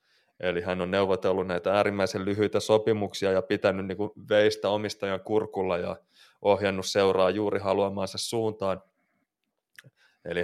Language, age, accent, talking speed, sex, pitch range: Finnish, 20-39, native, 125 wpm, male, 95-105 Hz